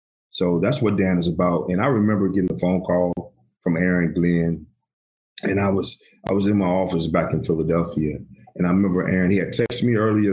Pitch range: 90-135 Hz